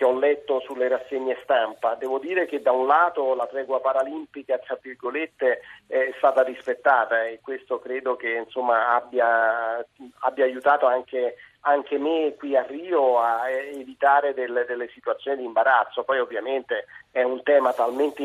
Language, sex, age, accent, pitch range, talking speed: Italian, male, 40-59, native, 130-180 Hz, 145 wpm